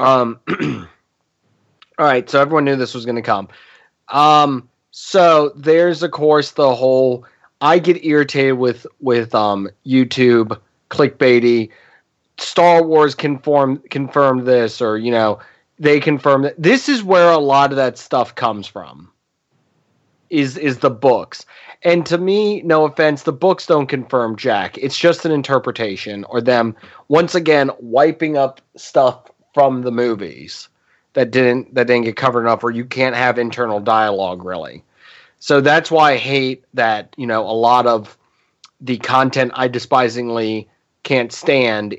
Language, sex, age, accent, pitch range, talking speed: English, male, 20-39, American, 120-155 Hz, 150 wpm